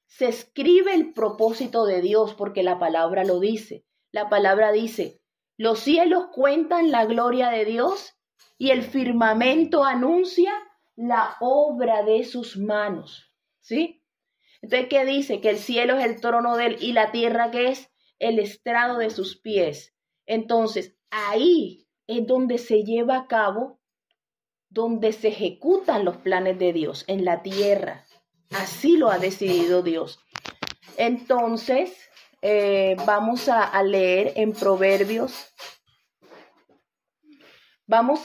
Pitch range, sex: 205-255 Hz, female